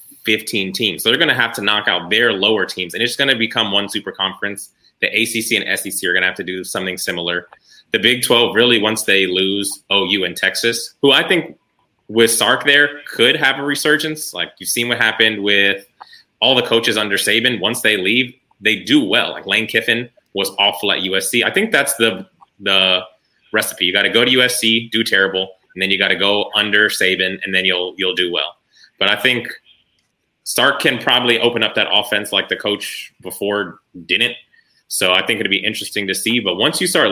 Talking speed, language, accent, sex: 215 wpm, English, American, male